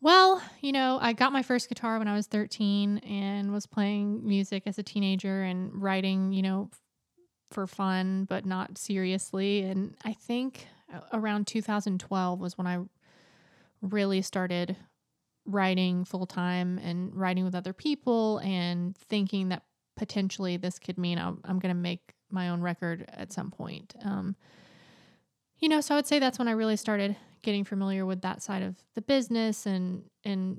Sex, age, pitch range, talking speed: female, 20-39, 185-210 Hz, 165 wpm